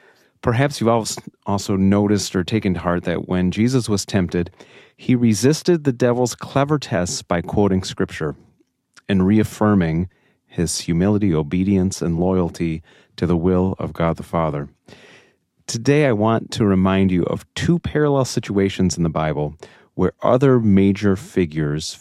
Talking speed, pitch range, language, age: 145 wpm, 85-105 Hz, English, 30-49